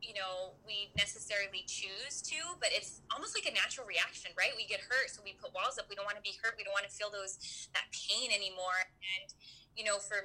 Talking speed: 240 wpm